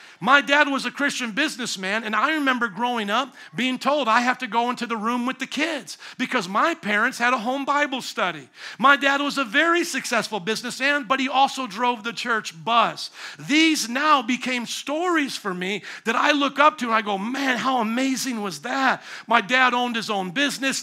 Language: English